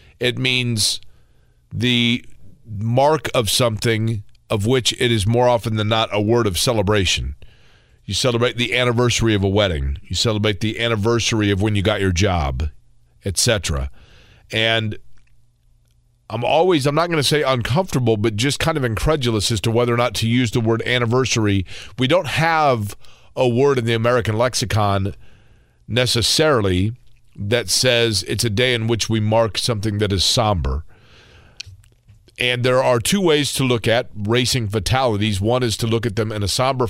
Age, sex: 40-59, male